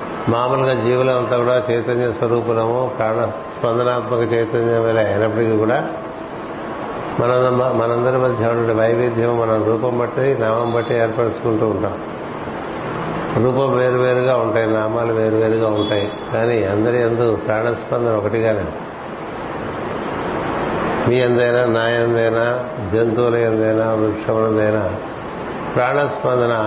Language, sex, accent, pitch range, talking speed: Telugu, male, native, 110-125 Hz, 90 wpm